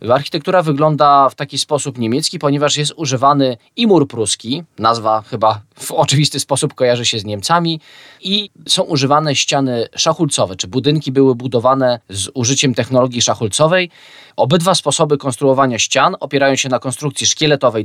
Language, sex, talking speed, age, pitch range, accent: Polish, male, 140 wpm, 20-39, 125-155 Hz, native